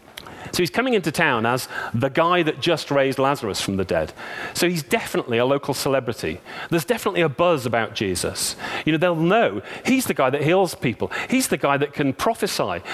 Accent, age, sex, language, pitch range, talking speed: British, 40-59, male, English, 120-170 Hz, 200 wpm